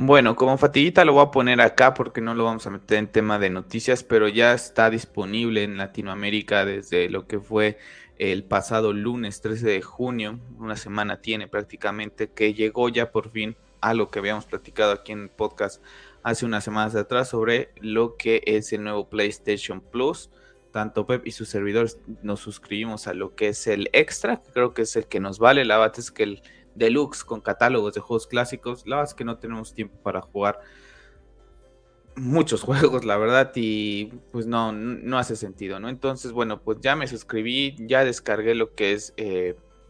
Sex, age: male, 20-39